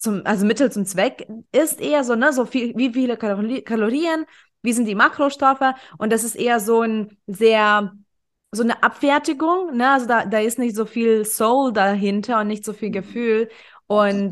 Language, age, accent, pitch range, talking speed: German, 20-39, German, 200-255 Hz, 190 wpm